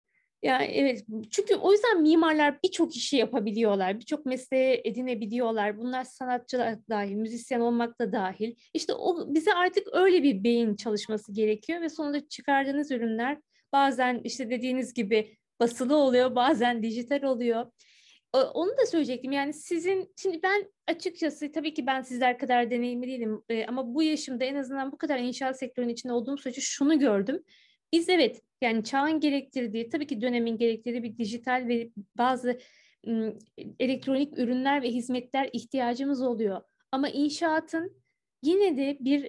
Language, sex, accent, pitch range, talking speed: Turkish, female, native, 240-300 Hz, 145 wpm